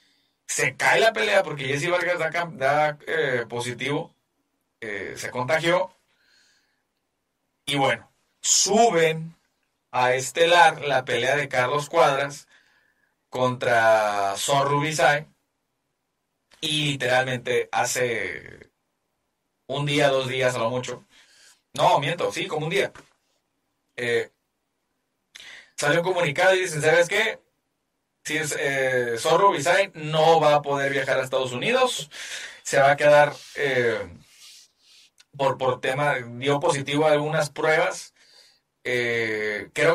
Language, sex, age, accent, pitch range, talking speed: Spanish, male, 30-49, Mexican, 125-160 Hz, 115 wpm